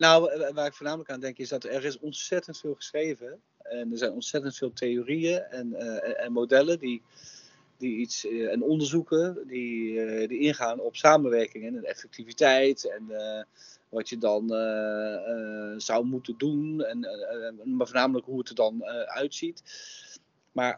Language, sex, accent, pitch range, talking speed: Dutch, male, Dutch, 125-170 Hz, 170 wpm